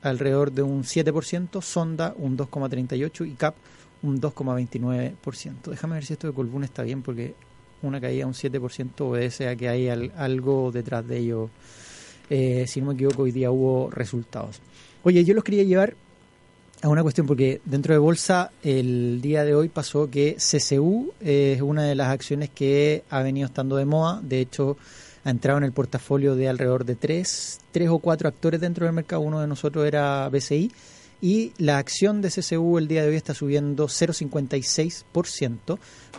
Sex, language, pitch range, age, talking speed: male, Spanish, 130-160 Hz, 30-49, 175 wpm